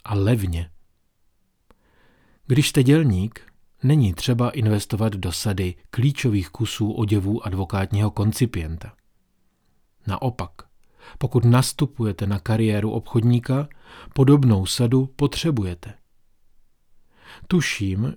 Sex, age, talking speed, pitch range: male, 40-59, 85 wpm, 100-125 Hz